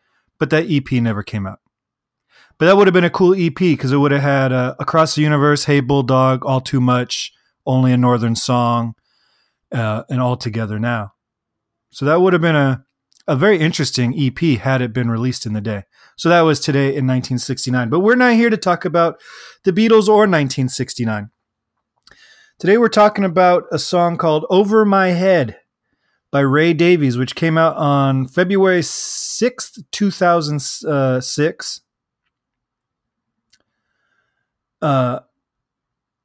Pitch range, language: 130-185 Hz, English